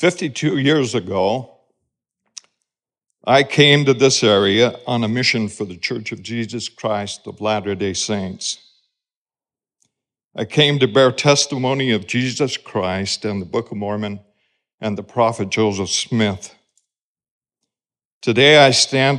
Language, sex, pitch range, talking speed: English, male, 100-125 Hz, 130 wpm